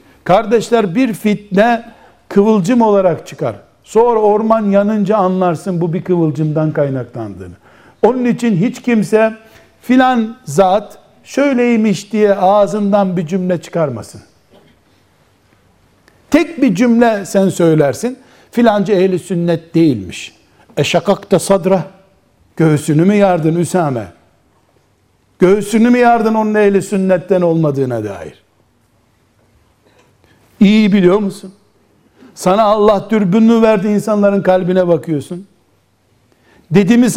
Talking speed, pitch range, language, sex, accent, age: 95 wpm, 155-220 Hz, Turkish, male, native, 60-79